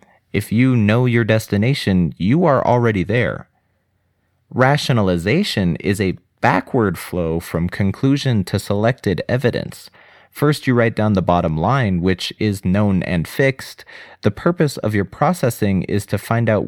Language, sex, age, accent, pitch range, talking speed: English, male, 30-49, American, 90-115 Hz, 145 wpm